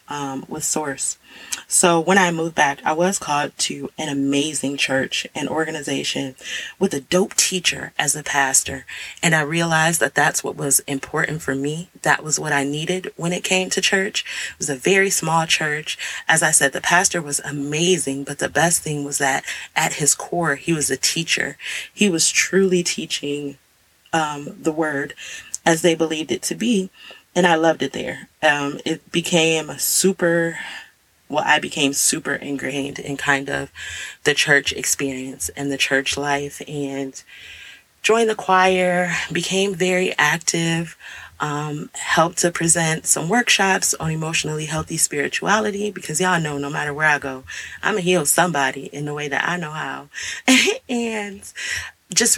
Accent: American